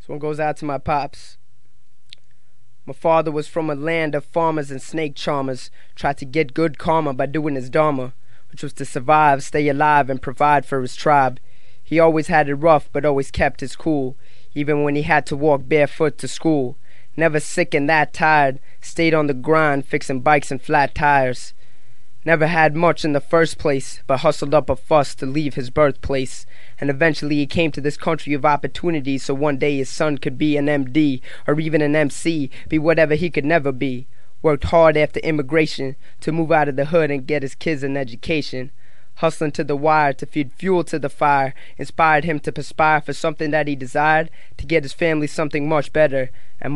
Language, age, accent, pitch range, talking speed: English, 20-39, American, 135-155 Hz, 205 wpm